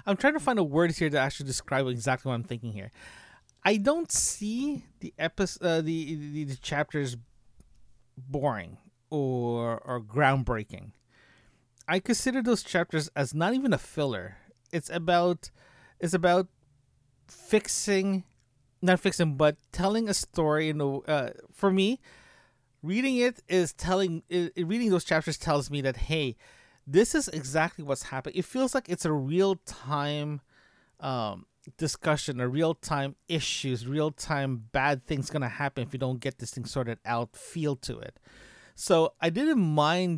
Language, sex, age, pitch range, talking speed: English, male, 30-49, 125-170 Hz, 155 wpm